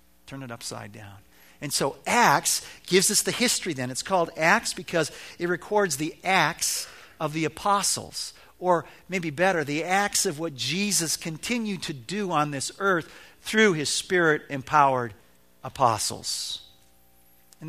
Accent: American